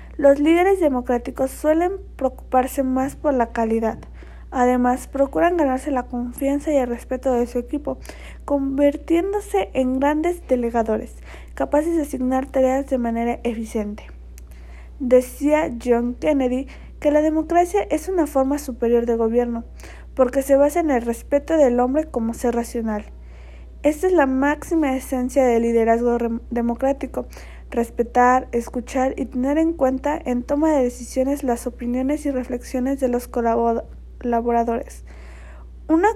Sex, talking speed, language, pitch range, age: female, 135 wpm, Spanish, 240-290 Hz, 20-39